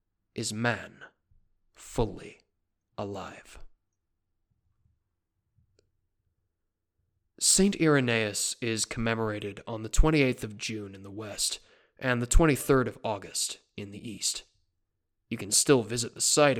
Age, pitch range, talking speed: 20-39, 100-125 Hz, 110 wpm